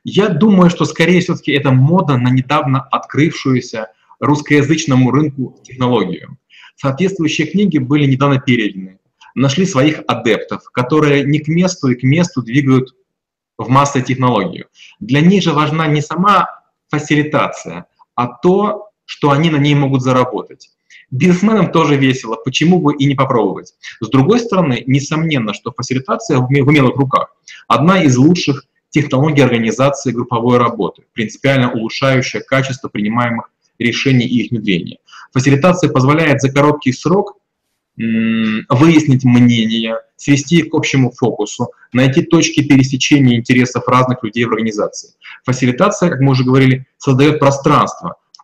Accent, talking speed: native, 135 wpm